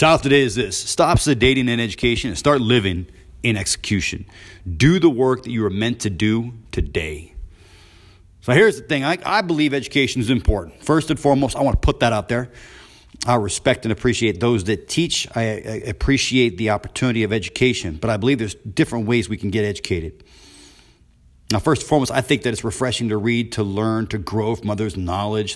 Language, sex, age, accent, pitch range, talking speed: English, male, 40-59, American, 100-130 Hz, 200 wpm